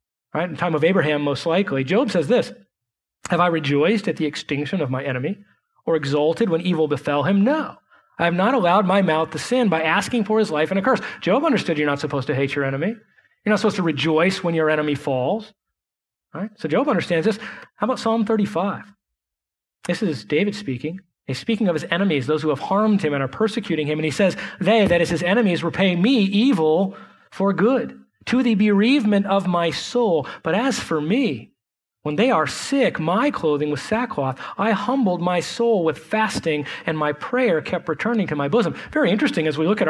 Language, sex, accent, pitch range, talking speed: English, male, American, 155-220 Hz, 210 wpm